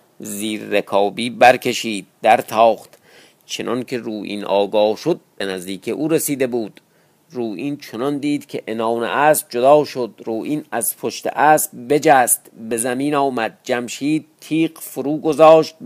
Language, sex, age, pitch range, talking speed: Persian, male, 50-69, 115-155 Hz, 135 wpm